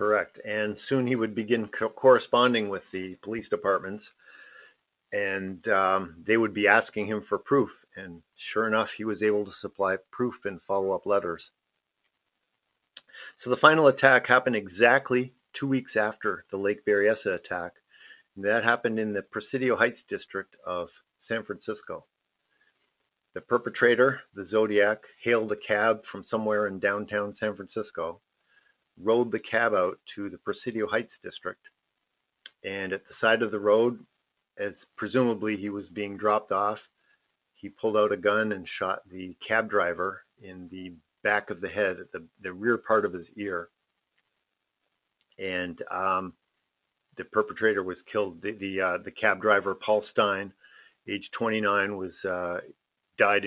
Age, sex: 50-69, male